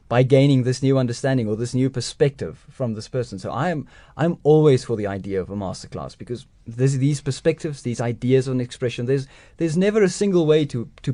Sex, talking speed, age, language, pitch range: male, 210 wpm, 30-49, English, 110-140 Hz